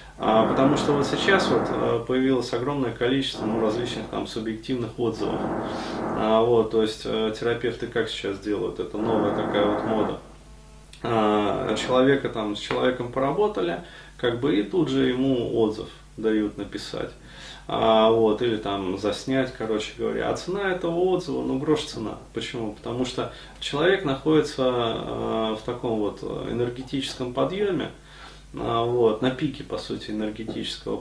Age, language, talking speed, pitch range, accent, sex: 20-39, Russian, 135 wpm, 110-135 Hz, native, male